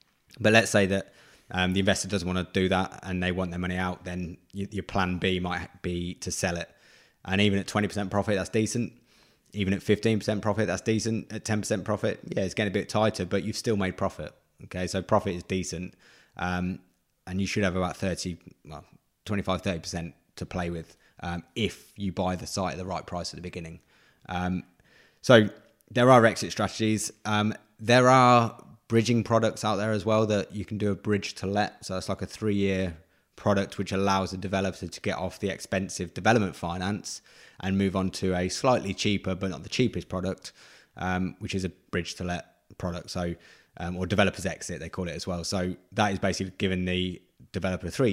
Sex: male